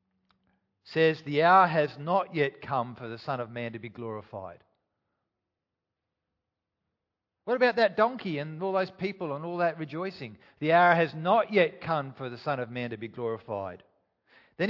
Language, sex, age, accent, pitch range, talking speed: English, male, 50-69, Australian, 115-170 Hz, 170 wpm